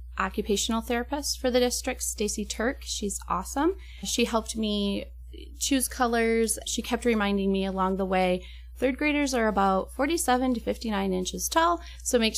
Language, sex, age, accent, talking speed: English, female, 30-49, American, 155 wpm